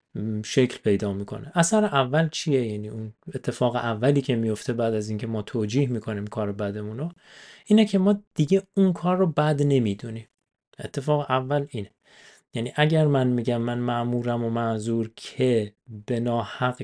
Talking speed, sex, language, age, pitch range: 155 wpm, male, Persian, 30-49, 115-160 Hz